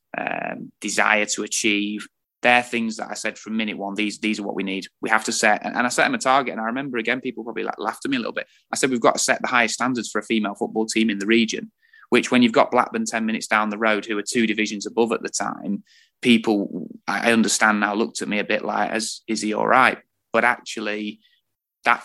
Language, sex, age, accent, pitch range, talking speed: English, male, 20-39, British, 105-115 Hz, 260 wpm